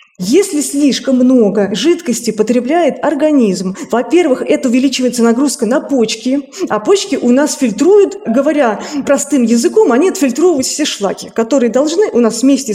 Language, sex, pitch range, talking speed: Russian, female, 230-290 Hz, 135 wpm